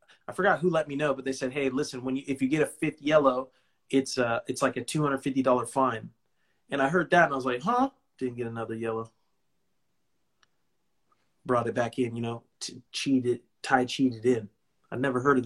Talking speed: 230 wpm